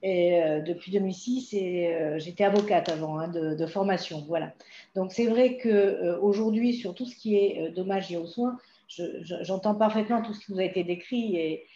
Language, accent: French, French